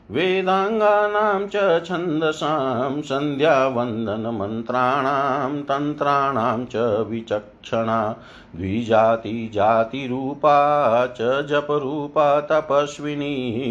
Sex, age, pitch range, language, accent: male, 50-69, 115-150 Hz, Hindi, native